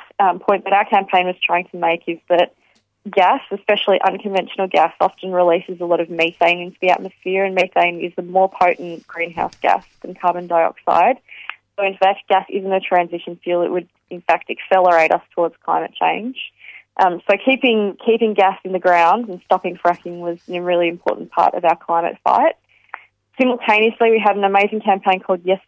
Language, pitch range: English, 175-195 Hz